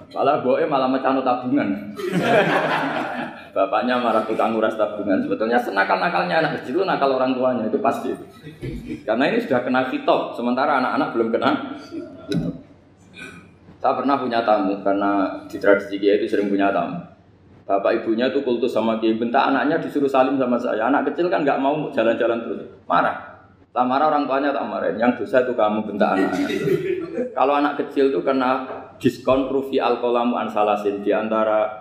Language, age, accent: Indonesian, 20-39, native